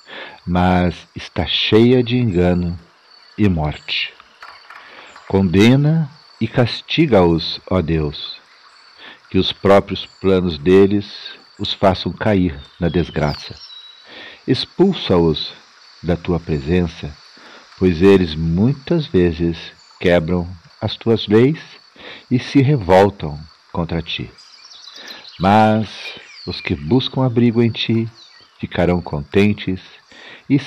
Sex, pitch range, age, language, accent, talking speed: male, 85-115 Hz, 60-79, Portuguese, Brazilian, 95 wpm